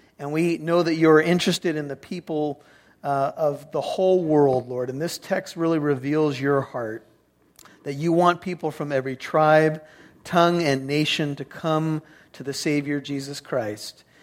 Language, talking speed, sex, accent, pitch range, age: English, 165 wpm, male, American, 140-165 Hz, 40-59